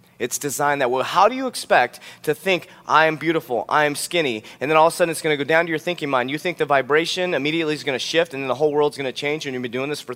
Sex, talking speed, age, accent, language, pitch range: male, 320 wpm, 30-49, American, English, 125-165 Hz